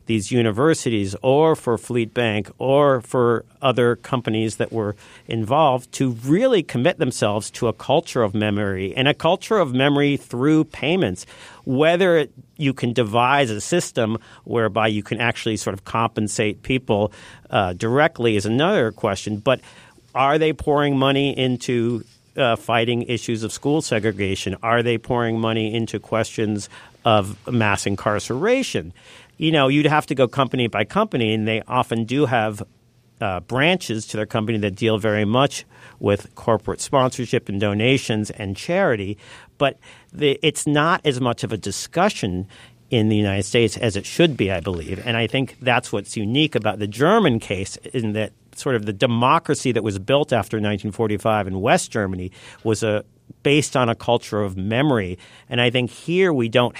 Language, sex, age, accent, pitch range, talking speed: English, male, 50-69, American, 110-135 Hz, 165 wpm